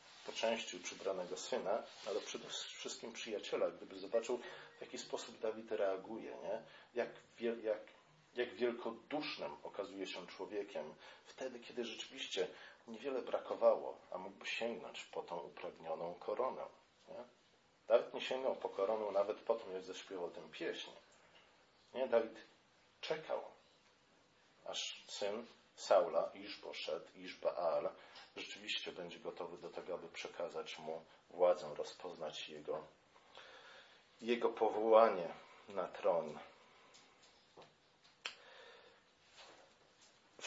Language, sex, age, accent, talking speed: Polish, male, 40-59, native, 115 wpm